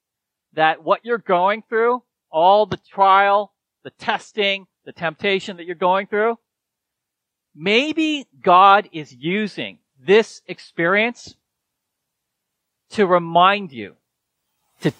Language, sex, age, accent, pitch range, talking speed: English, male, 40-59, American, 170-220 Hz, 105 wpm